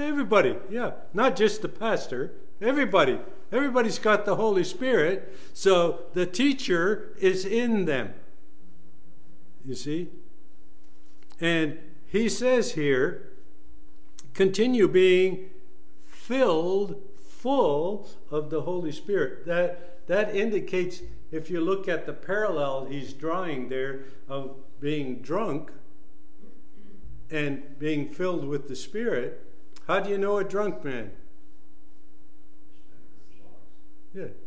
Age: 60-79